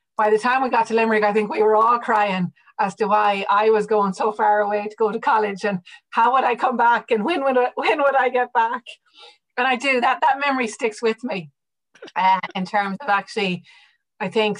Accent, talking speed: Irish, 225 wpm